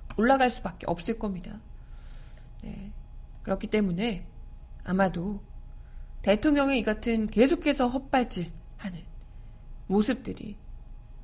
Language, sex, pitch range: Korean, female, 190-255 Hz